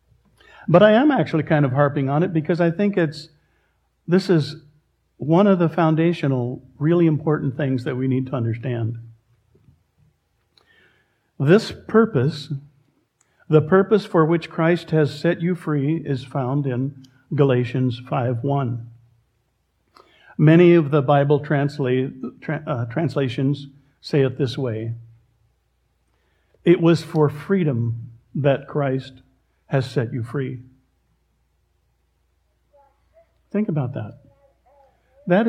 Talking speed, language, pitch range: 115 wpm, English, 125-165 Hz